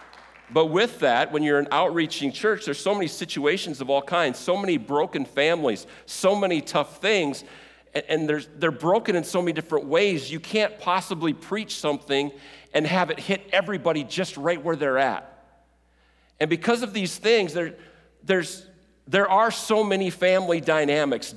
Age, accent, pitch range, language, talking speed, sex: 50-69, American, 135-185 Hz, English, 170 wpm, male